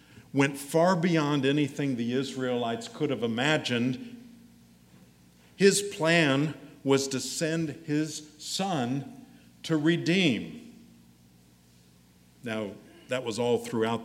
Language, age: English, 50-69